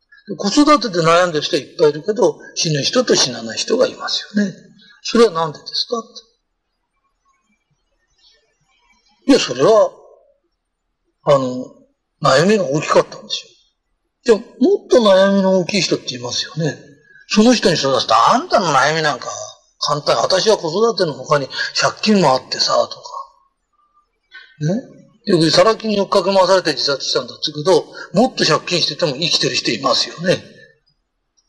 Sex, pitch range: male, 185-275 Hz